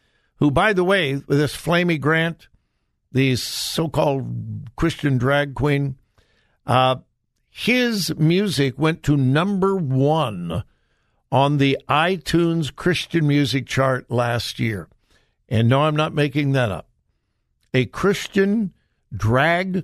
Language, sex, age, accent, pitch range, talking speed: English, male, 60-79, American, 125-165 Hz, 110 wpm